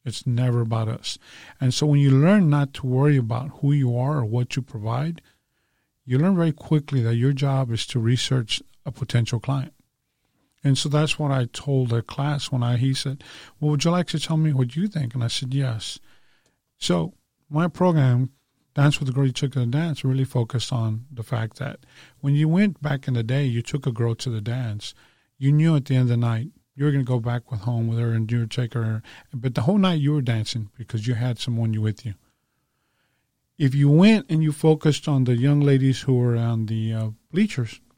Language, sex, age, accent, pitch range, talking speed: English, male, 40-59, American, 120-145 Hz, 225 wpm